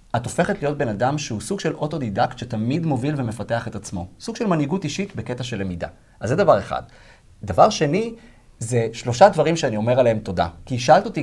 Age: 30-49